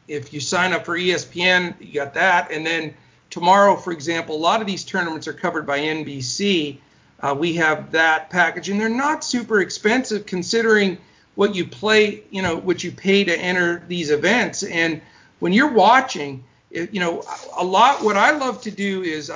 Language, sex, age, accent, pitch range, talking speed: English, male, 50-69, American, 145-185 Hz, 185 wpm